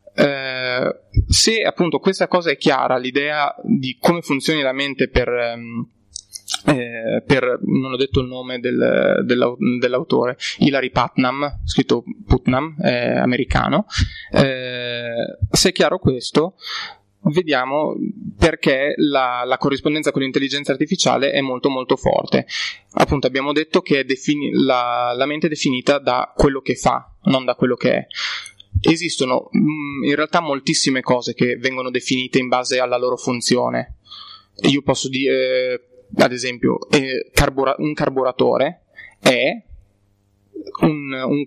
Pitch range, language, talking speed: 125-150 Hz, Italian, 130 wpm